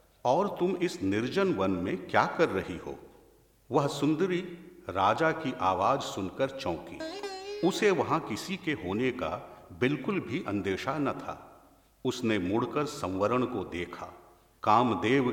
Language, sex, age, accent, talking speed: Hindi, male, 50-69, native, 135 wpm